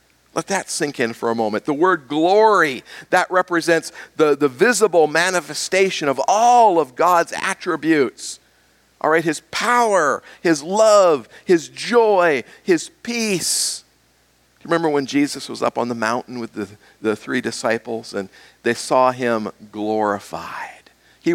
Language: English